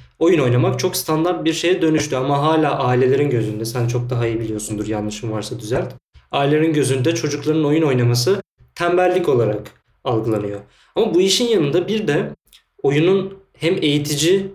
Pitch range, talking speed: 120-150 Hz, 150 wpm